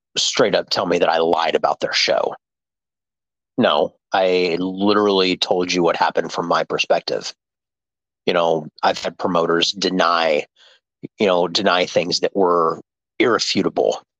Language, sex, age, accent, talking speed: English, male, 40-59, American, 140 wpm